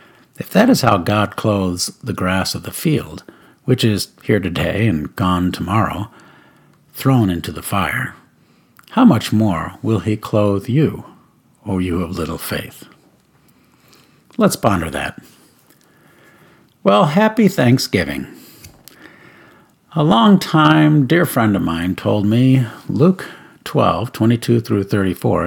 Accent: American